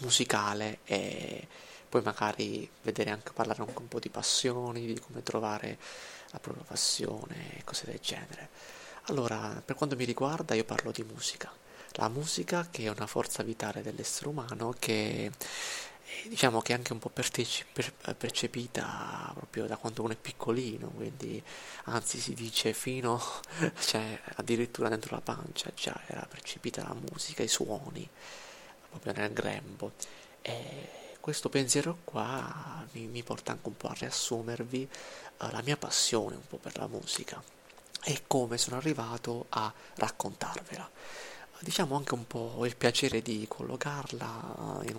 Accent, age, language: native, 30-49, Italian